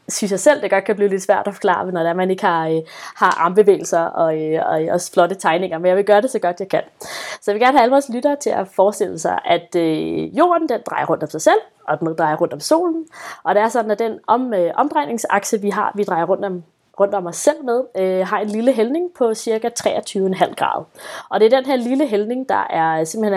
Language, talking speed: Danish, 245 wpm